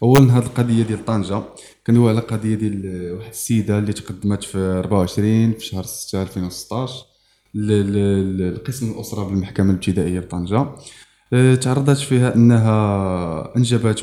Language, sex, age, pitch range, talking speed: Arabic, male, 20-39, 100-130 Hz, 120 wpm